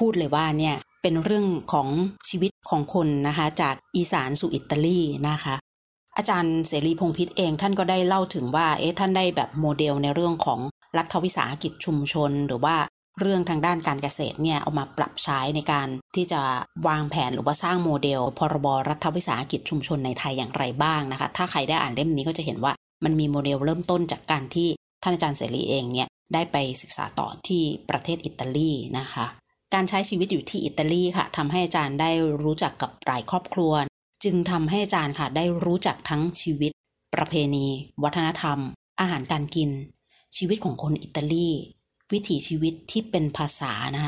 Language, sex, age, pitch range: Thai, female, 20-39, 145-175 Hz